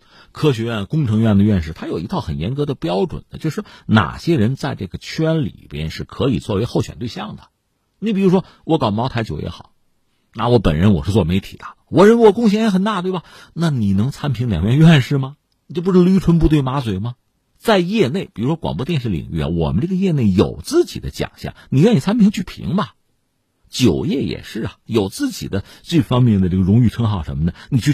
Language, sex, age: Chinese, male, 50-69